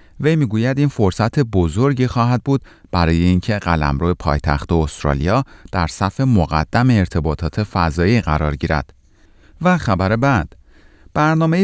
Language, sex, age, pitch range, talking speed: Persian, male, 40-59, 80-115 Hz, 125 wpm